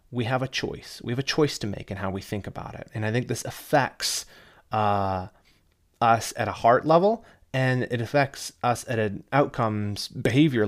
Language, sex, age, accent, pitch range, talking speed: English, male, 30-49, American, 100-135 Hz, 195 wpm